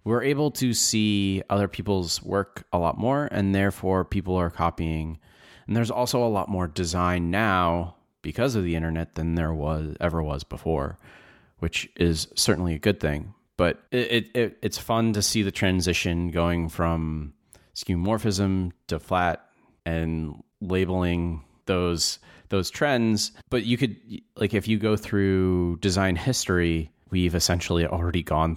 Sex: male